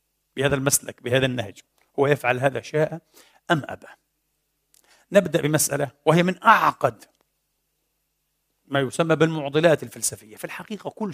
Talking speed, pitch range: 120 wpm, 140-170 Hz